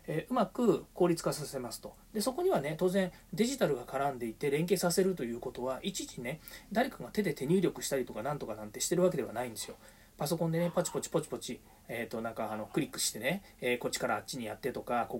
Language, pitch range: Japanese, 130-195 Hz